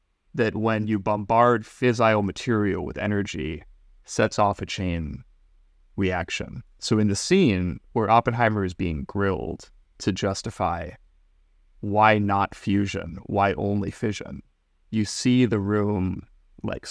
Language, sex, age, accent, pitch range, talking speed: English, male, 30-49, American, 90-110 Hz, 125 wpm